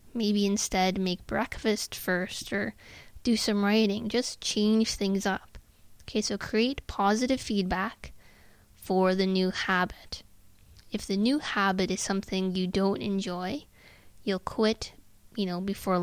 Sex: female